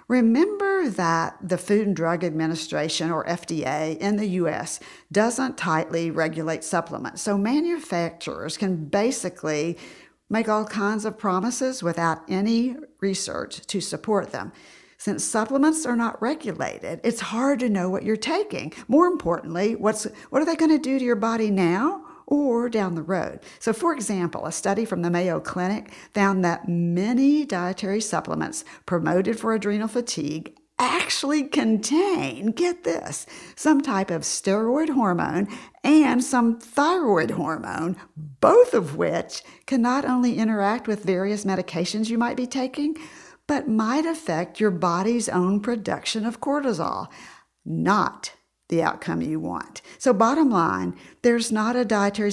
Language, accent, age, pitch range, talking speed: English, American, 50-69, 175-250 Hz, 145 wpm